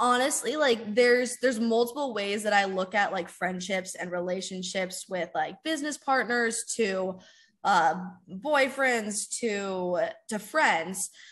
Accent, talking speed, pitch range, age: American, 125 wpm, 190-240 Hz, 10-29